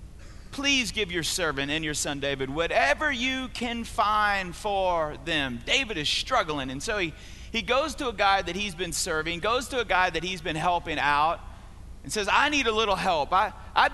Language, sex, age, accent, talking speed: English, male, 30-49, American, 200 wpm